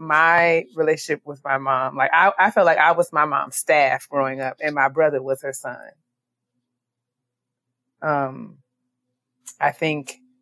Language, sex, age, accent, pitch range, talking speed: English, female, 20-39, American, 135-160 Hz, 150 wpm